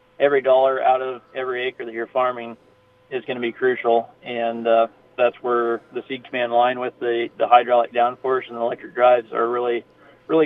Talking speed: 195 wpm